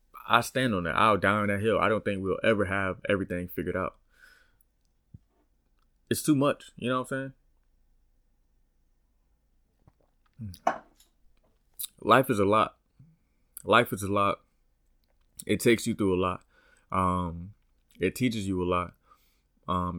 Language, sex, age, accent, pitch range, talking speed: English, male, 20-39, American, 90-115 Hz, 140 wpm